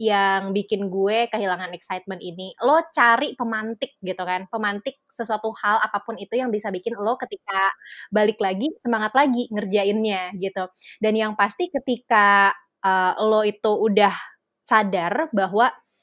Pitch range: 195-235 Hz